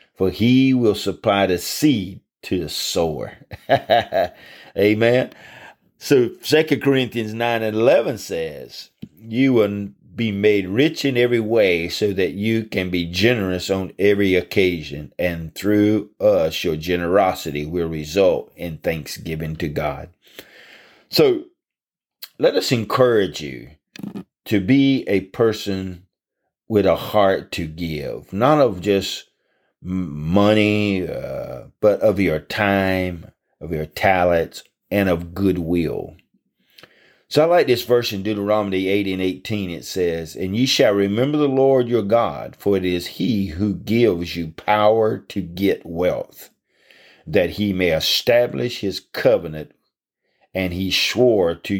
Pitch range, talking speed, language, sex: 90-115 Hz, 135 wpm, English, male